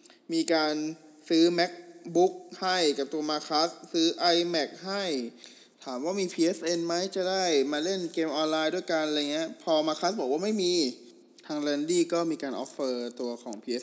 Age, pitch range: 20-39, 135-185 Hz